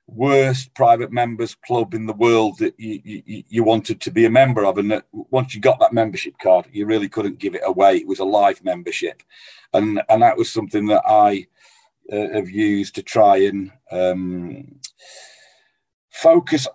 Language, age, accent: English, 40-59, British